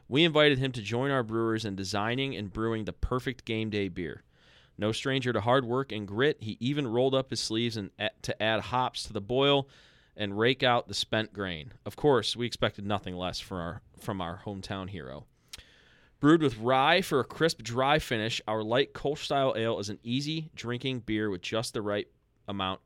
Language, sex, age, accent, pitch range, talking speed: English, male, 30-49, American, 105-135 Hz, 205 wpm